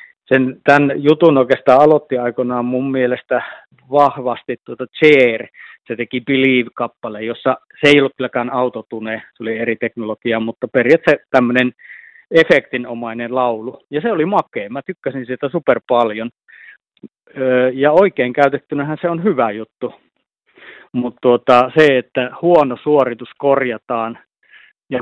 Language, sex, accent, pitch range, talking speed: Finnish, male, native, 125-145 Hz, 120 wpm